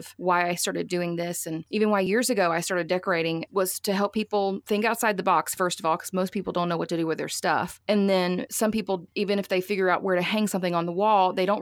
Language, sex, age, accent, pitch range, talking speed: English, female, 30-49, American, 170-200 Hz, 275 wpm